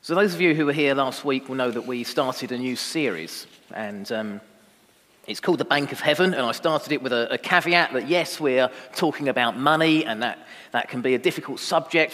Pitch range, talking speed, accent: 130-165 Hz, 225 wpm, British